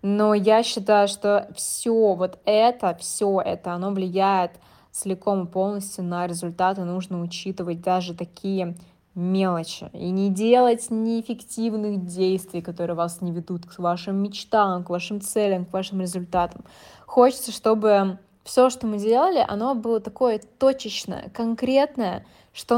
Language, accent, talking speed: Russian, native, 135 wpm